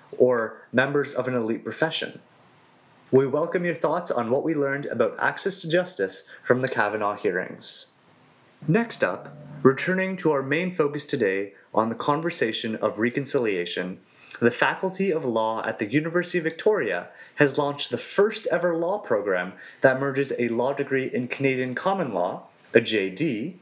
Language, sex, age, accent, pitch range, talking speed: English, male, 30-49, American, 130-175 Hz, 160 wpm